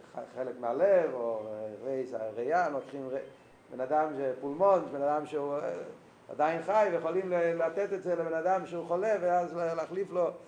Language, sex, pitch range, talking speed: Hebrew, male, 145-190 Hz, 150 wpm